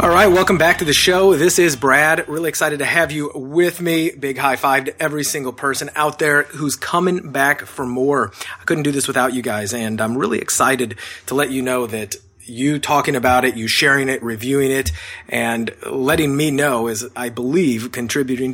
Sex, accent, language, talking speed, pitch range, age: male, American, English, 205 wpm, 115-150 Hz, 30-49